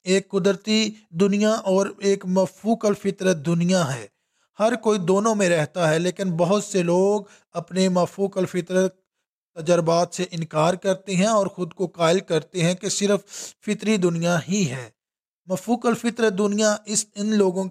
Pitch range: 165-195 Hz